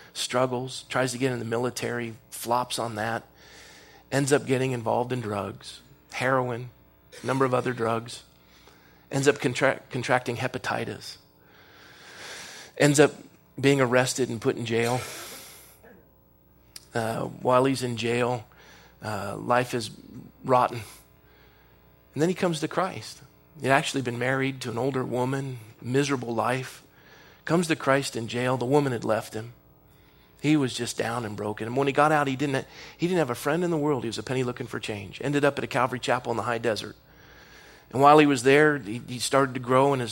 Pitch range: 110-135 Hz